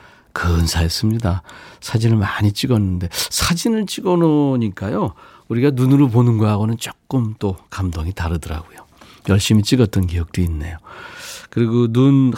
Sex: male